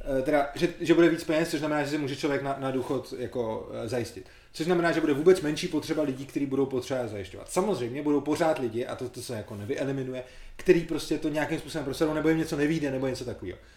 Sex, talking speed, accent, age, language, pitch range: male, 225 wpm, native, 30-49, Czech, 120-155 Hz